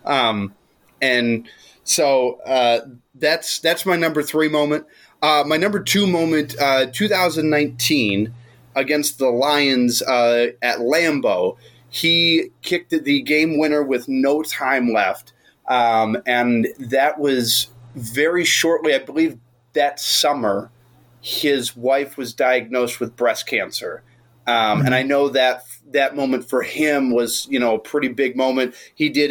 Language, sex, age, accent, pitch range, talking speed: English, male, 30-49, American, 120-150 Hz, 135 wpm